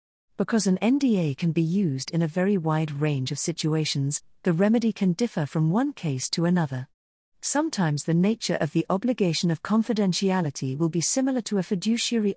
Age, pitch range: 40-59, 155-210 Hz